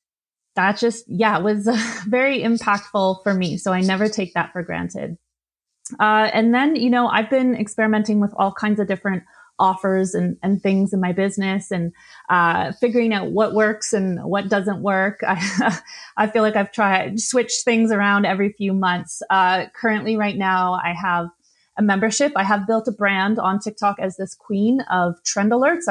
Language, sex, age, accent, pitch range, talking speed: English, female, 30-49, American, 185-220 Hz, 185 wpm